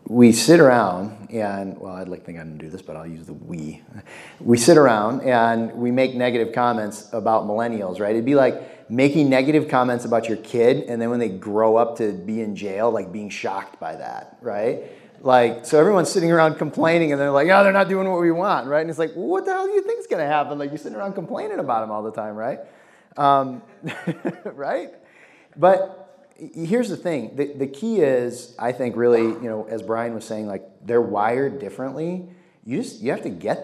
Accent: American